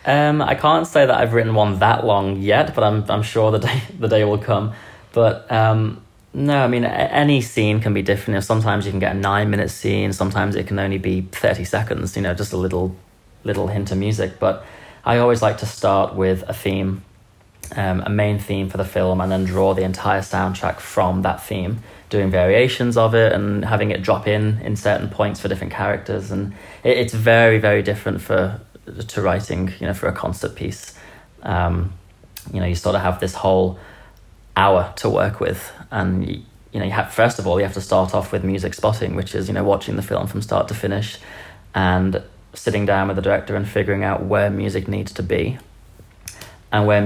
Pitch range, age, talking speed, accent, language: 95-110 Hz, 20-39, 215 wpm, British, English